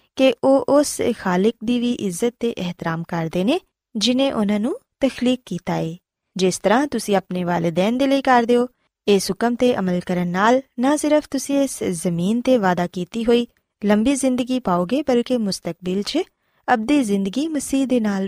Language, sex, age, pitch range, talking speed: Punjabi, female, 20-39, 185-250 Hz, 165 wpm